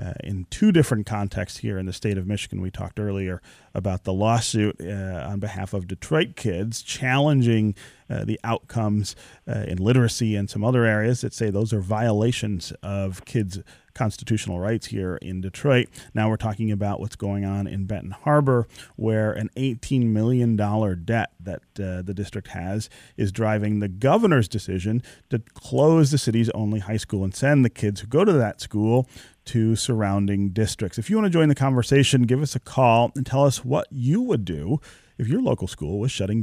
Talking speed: 190 wpm